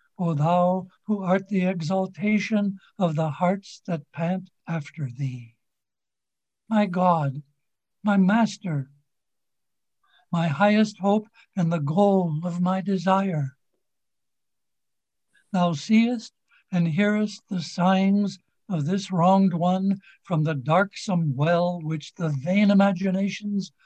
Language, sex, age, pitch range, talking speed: English, male, 60-79, 160-195 Hz, 110 wpm